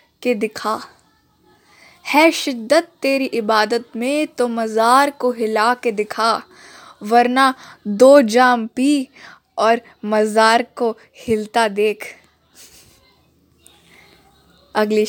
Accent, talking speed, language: native, 90 wpm, Hindi